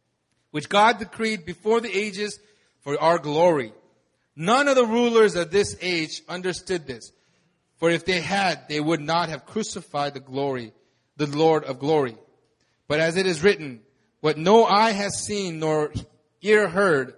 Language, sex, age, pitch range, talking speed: English, male, 30-49, 150-210 Hz, 160 wpm